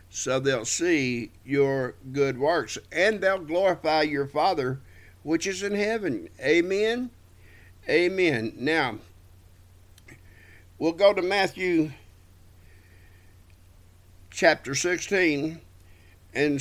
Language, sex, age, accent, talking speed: English, male, 50-69, American, 90 wpm